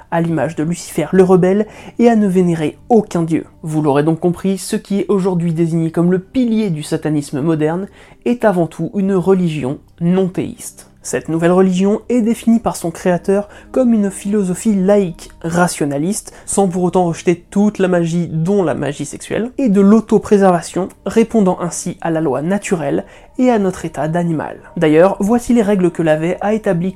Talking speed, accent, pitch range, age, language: 175 wpm, French, 175-205 Hz, 20-39, French